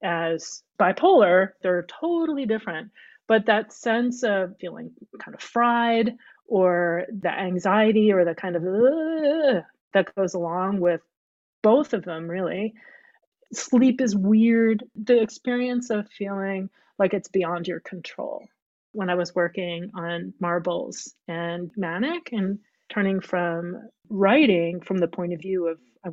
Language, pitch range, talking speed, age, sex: English, 175-235 Hz, 140 wpm, 30-49, female